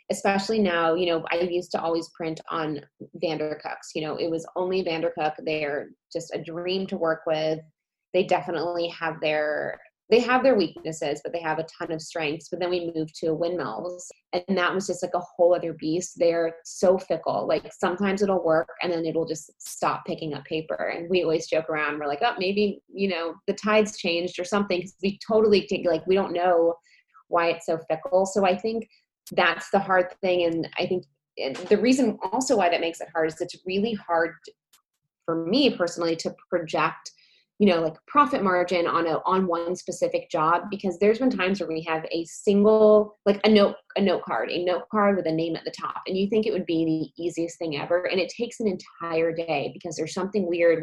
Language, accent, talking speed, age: English, American, 210 wpm, 20-39